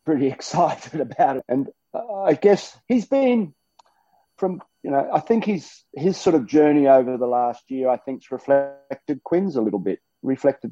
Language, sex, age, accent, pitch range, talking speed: English, male, 40-59, Australian, 115-145 Hz, 180 wpm